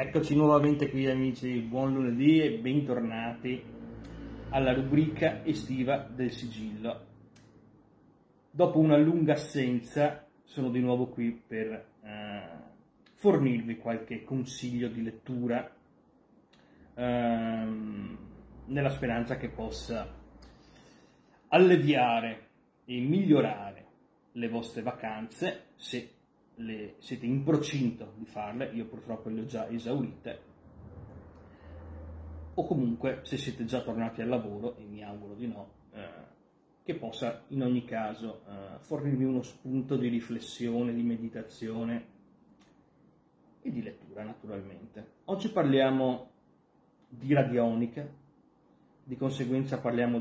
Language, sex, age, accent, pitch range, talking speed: Italian, male, 30-49, native, 115-135 Hz, 110 wpm